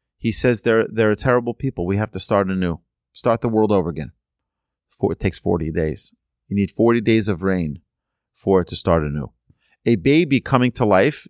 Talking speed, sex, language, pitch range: 205 wpm, male, English, 105-135 Hz